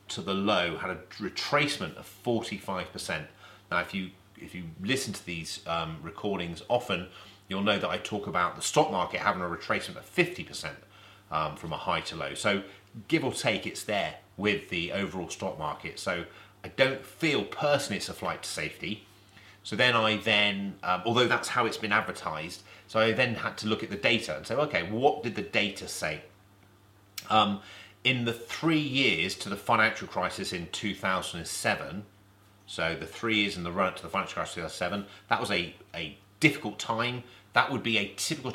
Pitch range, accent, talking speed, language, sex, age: 95-115 Hz, British, 190 wpm, English, male, 30-49